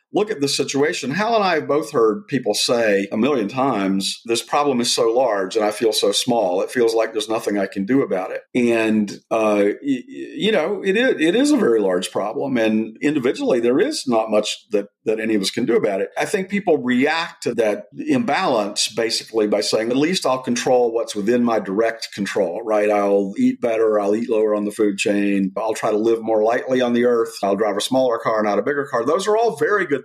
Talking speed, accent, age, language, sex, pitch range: 230 wpm, American, 50-69, English, male, 110-165 Hz